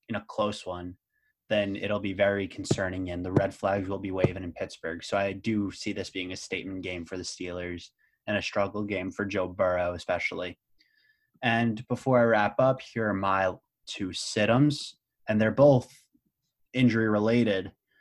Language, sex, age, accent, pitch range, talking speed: English, male, 20-39, American, 95-120 Hz, 175 wpm